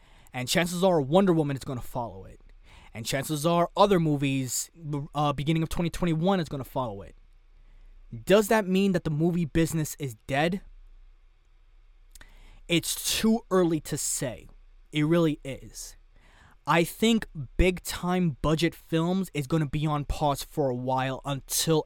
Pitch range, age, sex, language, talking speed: 125-170 Hz, 20-39, male, English, 155 wpm